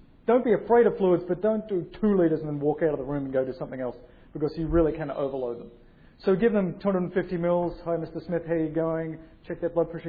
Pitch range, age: 150-200 Hz, 40-59